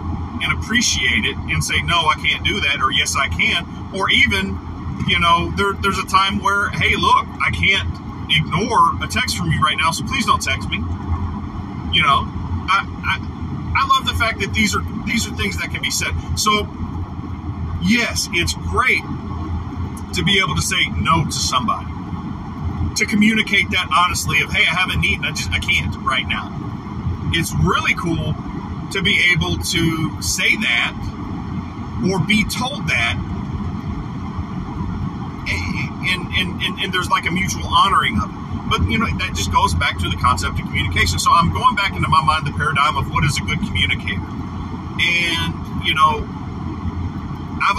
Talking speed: 175 wpm